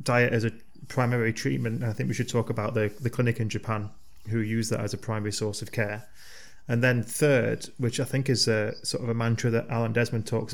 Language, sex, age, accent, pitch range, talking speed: Ukrainian, male, 20-39, British, 110-125 Hz, 240 wpm